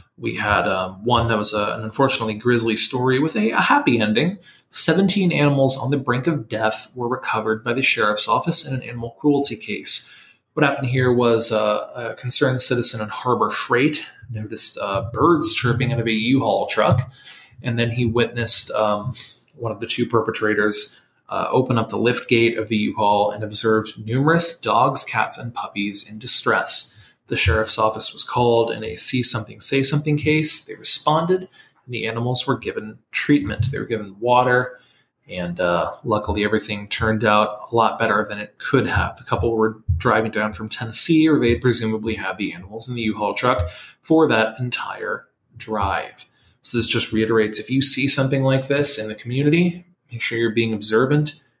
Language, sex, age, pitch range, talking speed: English, male, 20-39, 110-130 Hz, 180 wpm